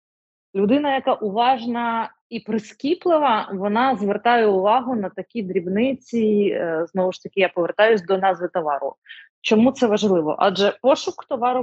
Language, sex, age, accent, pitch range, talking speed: Ukrainian, female, 20-39, native, 185-220 Hz, 130 wpm